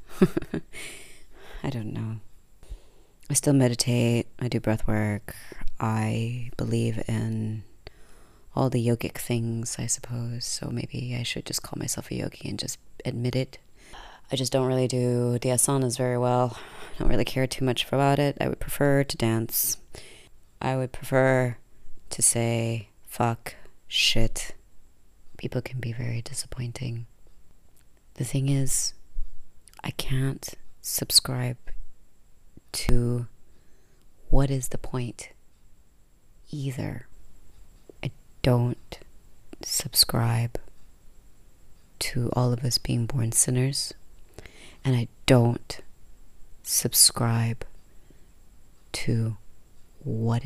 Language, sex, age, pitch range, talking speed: English, female, 30-49, 110-130 Hz, 110 wpm